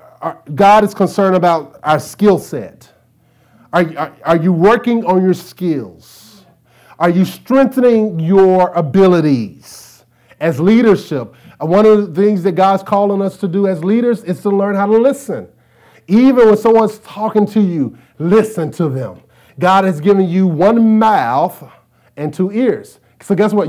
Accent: American